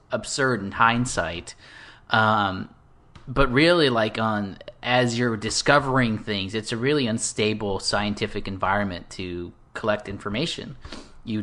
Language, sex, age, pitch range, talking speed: English, male, 30-49, 105-130 Hz, 115 wpm